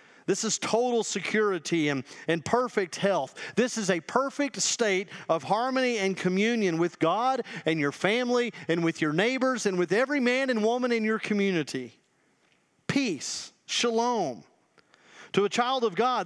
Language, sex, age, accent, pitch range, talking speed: English, male, 40-59, American, 165-225 Hz, 155 wpm